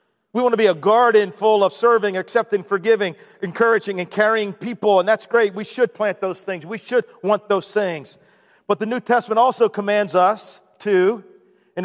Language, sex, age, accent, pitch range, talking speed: English, male, 40-59, American, 195-230 Hz, 185 wpm